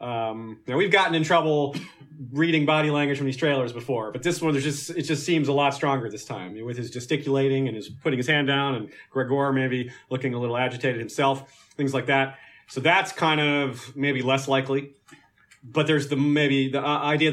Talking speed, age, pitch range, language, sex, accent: 205 wpm, 30-49, 125-150 Hz, English, male, American